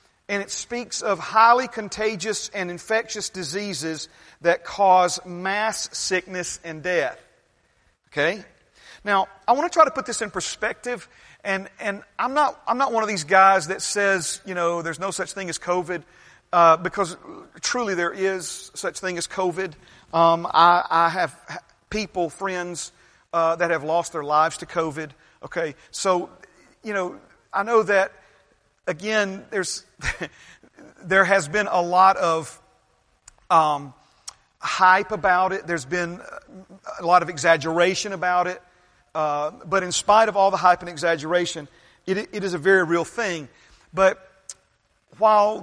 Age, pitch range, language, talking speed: 40-59, 170-200 Hz, English, 150 wpm